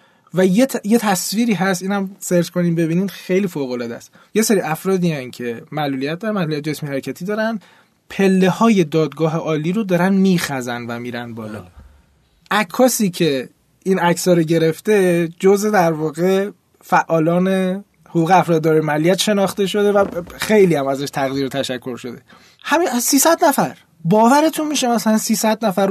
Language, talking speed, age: Persian, 150 wpm, 20-39